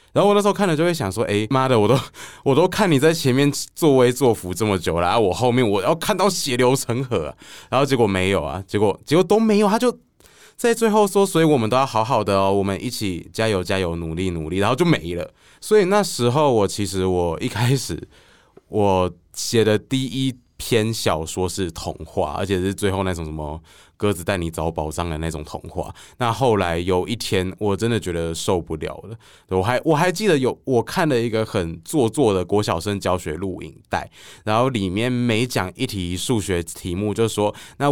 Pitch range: 95-125 Hz